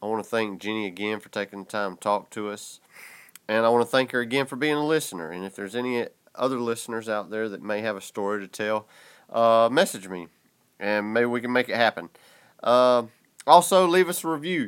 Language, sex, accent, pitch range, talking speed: English, male, American, 105-135 Hz, 230 wpm